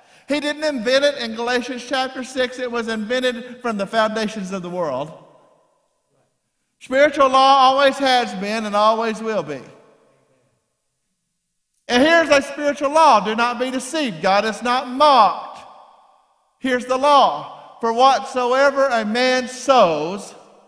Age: 50-69